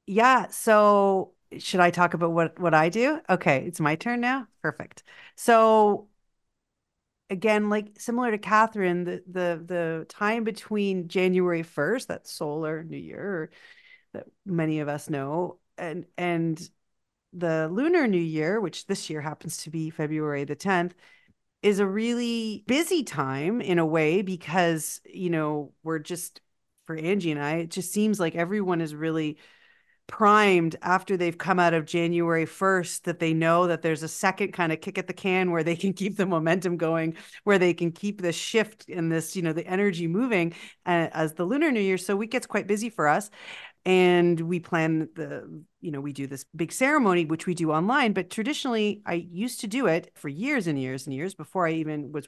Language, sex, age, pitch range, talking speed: English, female, 40-59, 165-205 Hz, 185 wpm